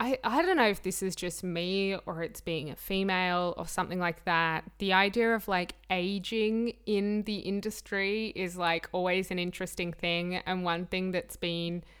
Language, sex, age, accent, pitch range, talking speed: English, female, 20-39, Australian, 170-210 Hz, 185 wpm